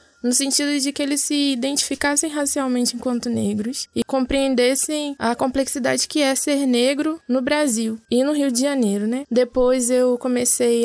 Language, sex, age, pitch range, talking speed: Portuguese, female, 10-29, 235-275 Hz, 160 wpm